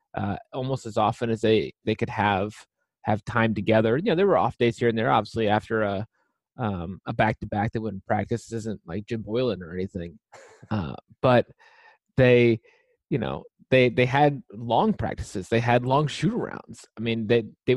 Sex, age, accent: male, 20-39, American